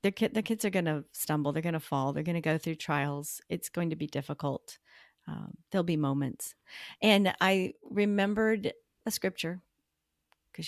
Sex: female